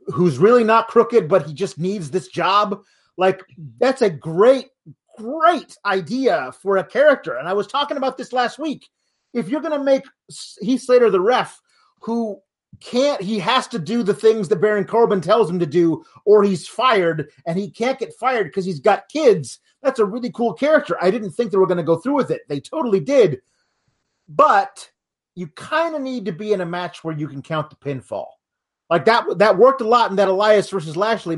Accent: American